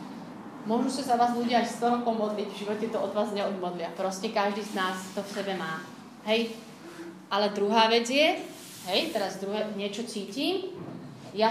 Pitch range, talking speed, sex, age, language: 190-230 Hz, 175 wpm, female, 30-49, Slovak